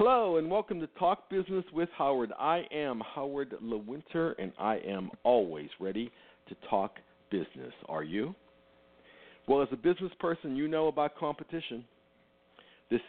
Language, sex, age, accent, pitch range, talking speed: English, male, 50-69, American, 90-130 Hz, 145 wpm